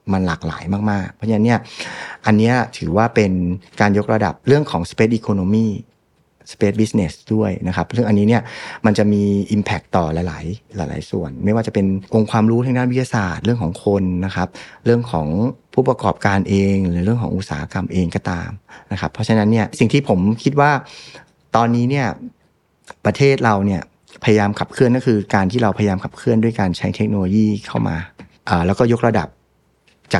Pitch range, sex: 95-120 Hz, male